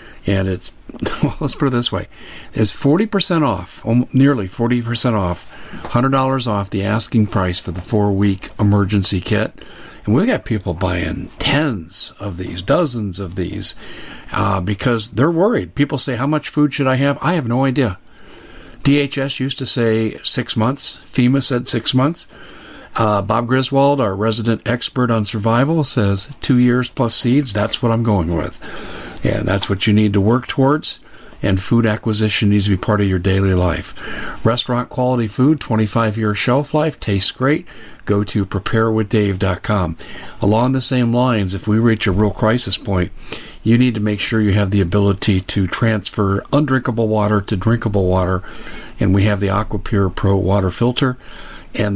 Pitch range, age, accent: 100-125 Hz, 50-69, American